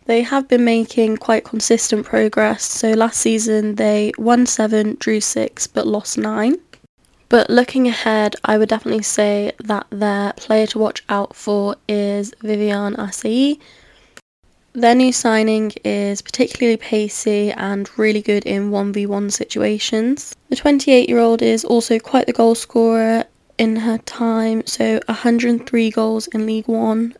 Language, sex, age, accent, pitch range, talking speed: English, female, 10-29, British, 210-230 Hz, 140 wpm